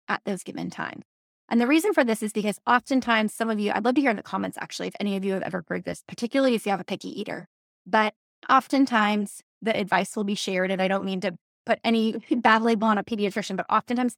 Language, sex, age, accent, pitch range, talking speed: English, female, 20-39, American, 195-235 Hz, 250 wpm